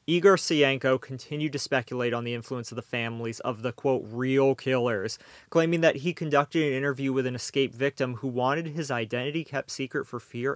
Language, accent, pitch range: English, American, 120-145 Hz